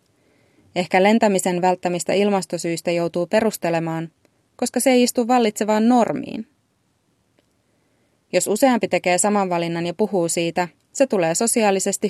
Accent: native